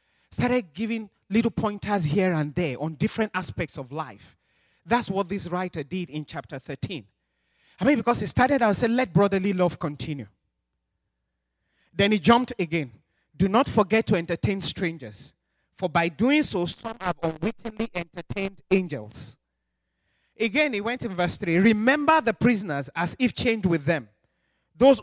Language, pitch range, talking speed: English, 160-220 Hz, 155 wpm